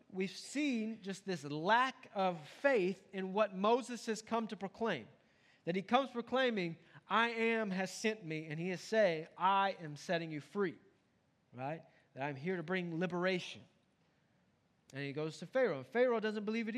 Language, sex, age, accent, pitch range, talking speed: English, male, 30-49, American, 145-220 Hz, 170 wpm